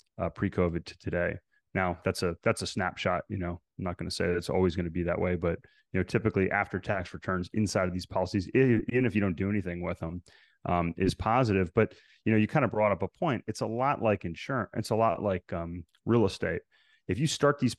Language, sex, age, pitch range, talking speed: English, male, 30-49, 95-115 Hz, 245 wpm